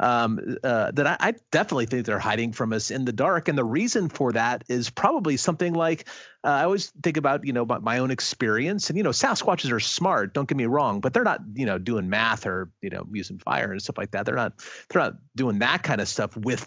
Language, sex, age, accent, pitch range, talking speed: English, male, 30-49, American, 110-150 Hz, 250 wpm